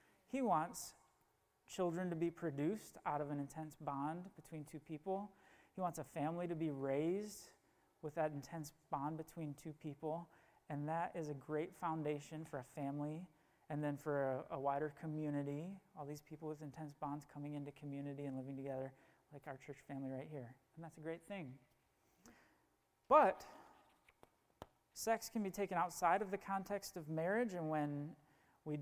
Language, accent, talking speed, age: English, American, 170 wpm, 30-49